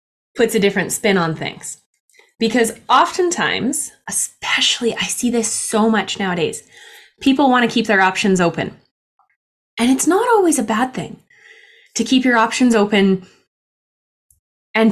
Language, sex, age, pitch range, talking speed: English, female, 20-39, 185-245 Hz, 140 wpm